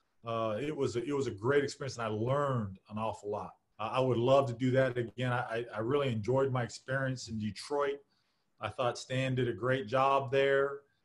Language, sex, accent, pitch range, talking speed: English, male, American, 120-140 Hz, 210 wpm